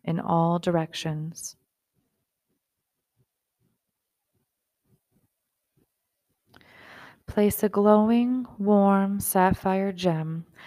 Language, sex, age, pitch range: English, female, 20-39, 165-195 Hz